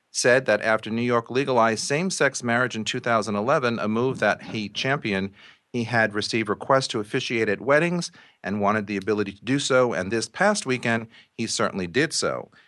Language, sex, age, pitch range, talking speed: English, male, 40-59, 100-125 Hz, 180 wpm